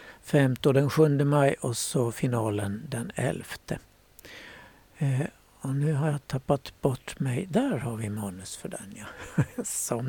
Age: 60-79